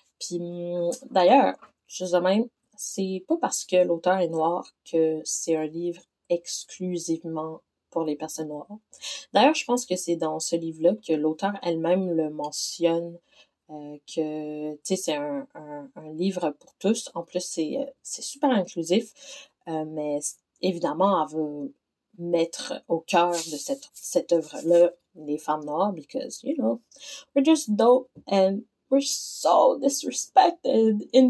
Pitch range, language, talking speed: 170-260 Hz, French, 150 wpm